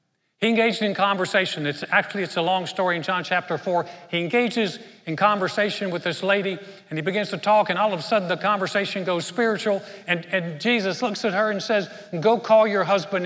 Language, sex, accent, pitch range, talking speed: English, male, American, 165-205 Hz, 215 wpm